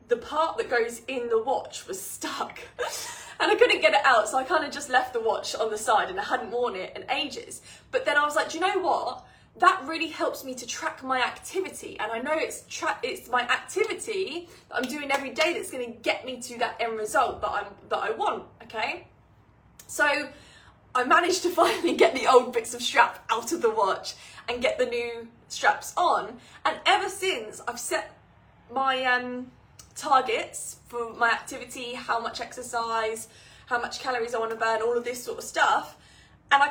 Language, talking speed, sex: English, 210 wpm, female